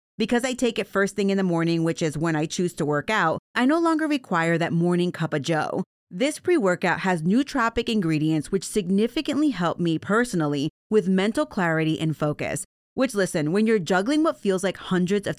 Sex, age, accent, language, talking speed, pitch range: female, 30-49, American, English, 200 wpm, 160-225 Hz